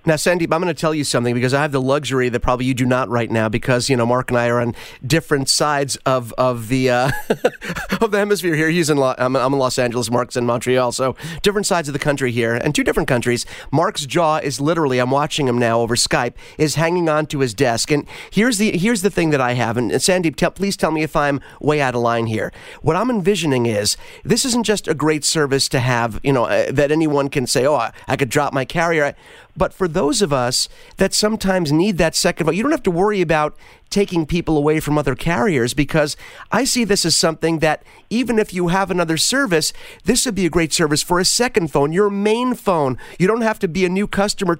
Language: English